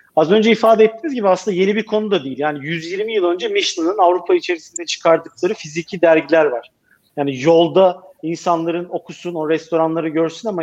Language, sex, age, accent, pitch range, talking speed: Turkish, male, 40-59, native, 160-215 Hz, 170 wpm